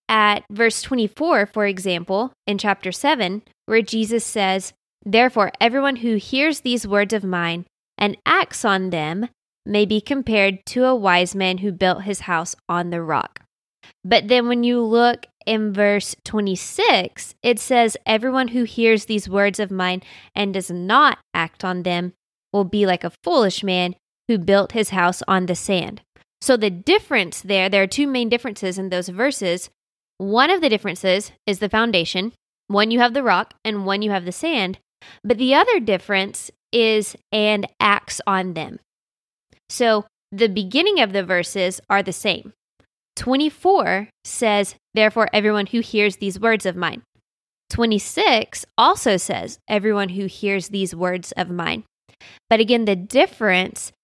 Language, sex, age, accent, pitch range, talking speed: English, female, 20-39, American, 190-235 Hz, 160 wpm